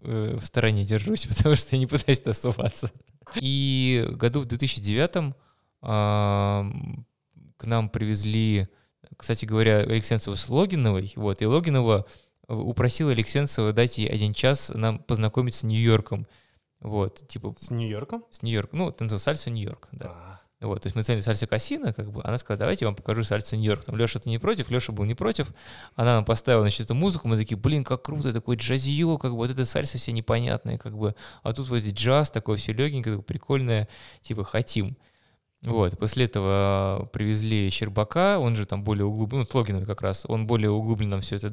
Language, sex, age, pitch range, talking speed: Russian, male, 20-39, 105-130 Hz, 175 wpm